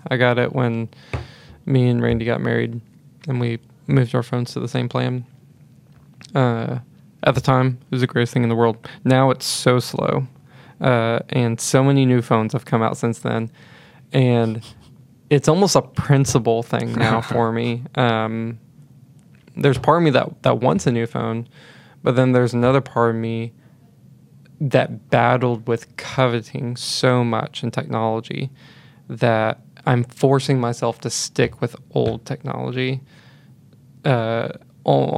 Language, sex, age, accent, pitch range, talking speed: English, male, 20-39, American, 115-135 Hz, 155 wpm